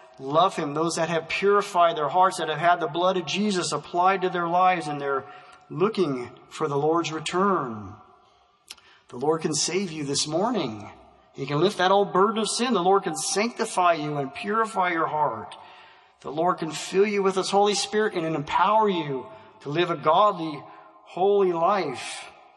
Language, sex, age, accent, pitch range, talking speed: English, male, 40-59, American, 150-195 Hz, 180 wpm